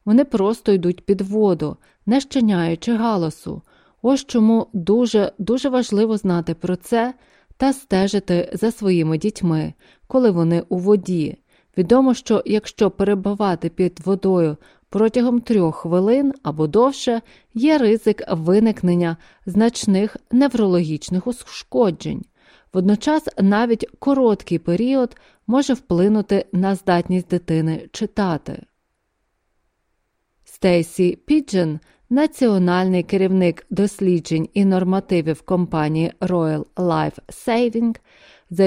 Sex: female